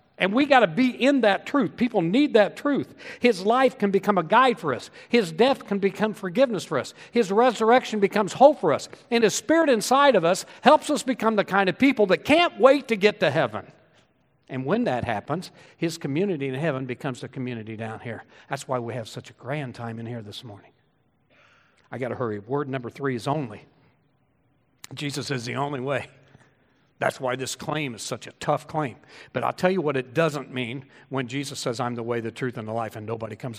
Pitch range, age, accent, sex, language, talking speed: 125-185 Hz, 60-79, American, male, English, 220 wpm